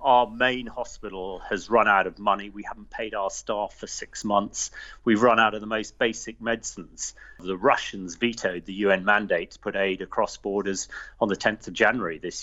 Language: English